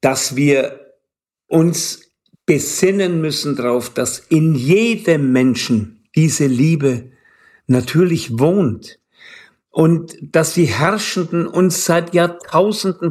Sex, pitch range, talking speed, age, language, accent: male, 130-170 Hz, 95 wpm, 50-69, German, German